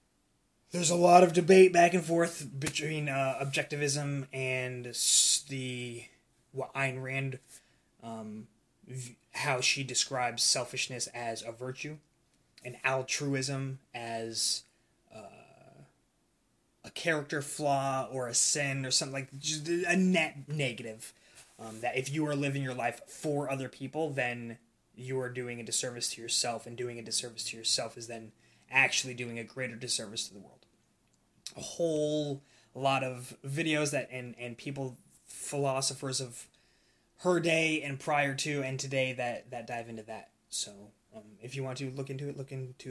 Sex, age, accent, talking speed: male, 20-39, American, 155 wpm